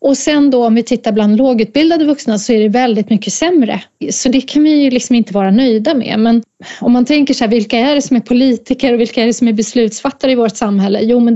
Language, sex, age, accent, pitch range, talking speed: Swedish, female, 30-49, native, 200-255 Hz, 260 wpm